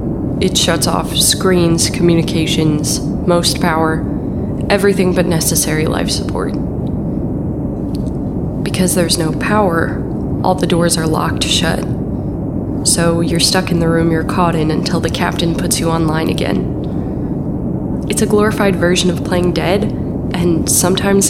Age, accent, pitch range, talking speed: 20-39, American, 160-190 Hz, 130 wpm